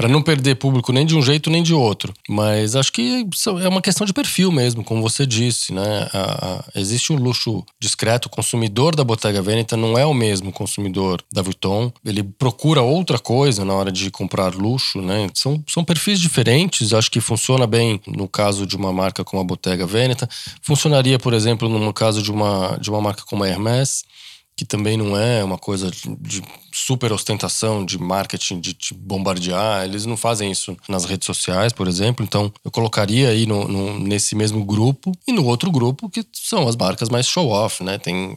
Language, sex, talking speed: Portuguese, male, 200 wpm